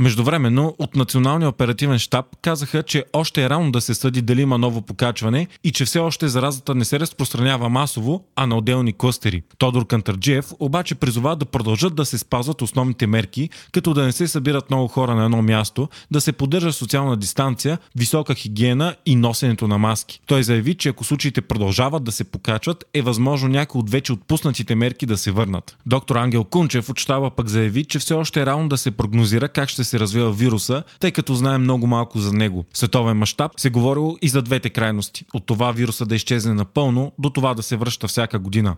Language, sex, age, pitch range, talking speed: Bulgarian, male, 30-49, 115-145 Hz, 200 wpm